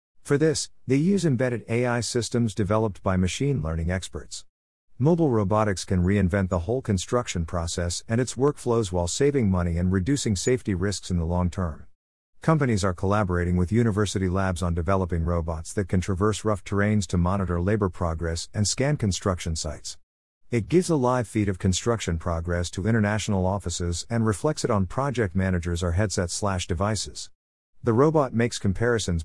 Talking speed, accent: 165 wpm, American